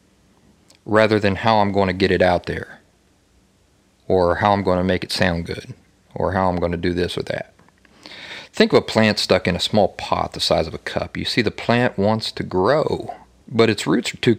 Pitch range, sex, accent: 90-110 Hz, male, American